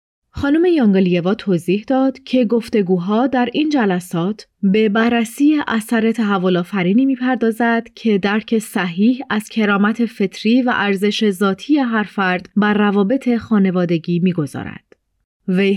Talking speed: 115 wpm